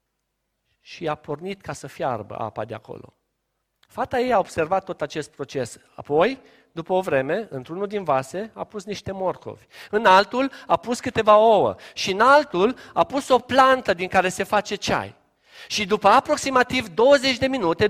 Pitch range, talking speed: 175-245 Hz, 170 wpm